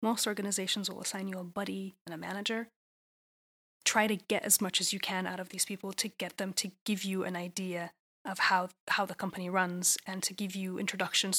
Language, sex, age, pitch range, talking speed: English, female, 20-39, 185-215 Hz, 215 wpm